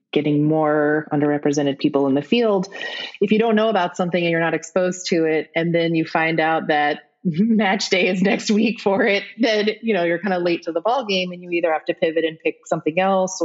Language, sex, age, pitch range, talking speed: English, female, 30-49, 150-180 Hz, 235 wpm